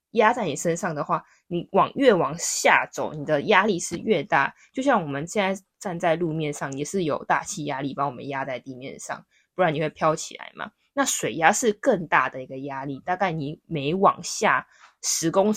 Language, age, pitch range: Chinese, 20-39, 155-200 Hz